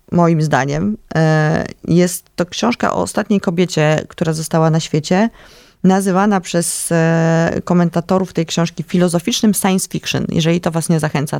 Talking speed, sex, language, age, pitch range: 130 wpm, female, Polish, 20-39, 170-195 Hz